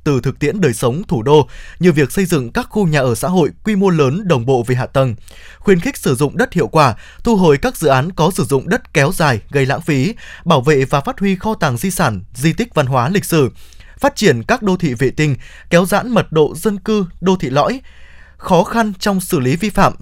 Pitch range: 135-185 Hz